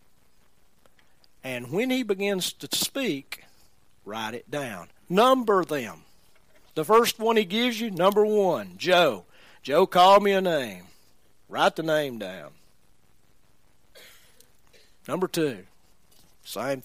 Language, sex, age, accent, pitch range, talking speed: English, male, 50-69, American, 130-210 Hz, 115 wpm